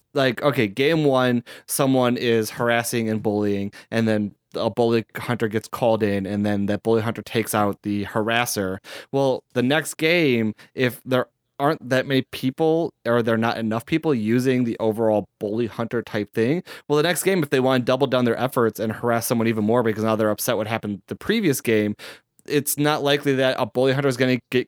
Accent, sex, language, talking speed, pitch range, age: American, male, English, 210 wpm, 110-135 Hz, 20-39